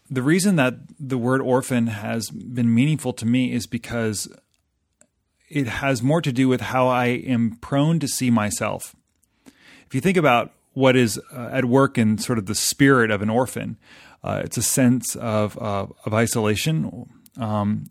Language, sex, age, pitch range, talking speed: English, male, 30-49, 110-135 Hz, 175 wpm